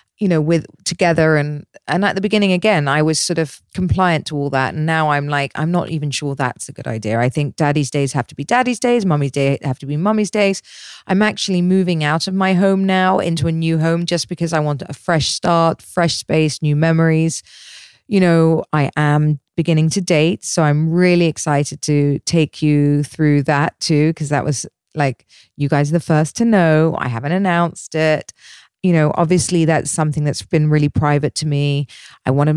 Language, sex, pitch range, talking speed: English, female, 150-180 Hz, 210 wpm